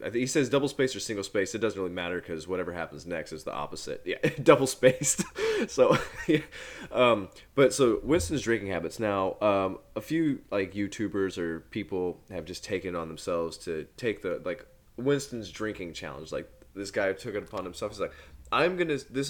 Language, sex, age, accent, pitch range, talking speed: English, male, 20-39, American, 90-125 Hz, 195 wpm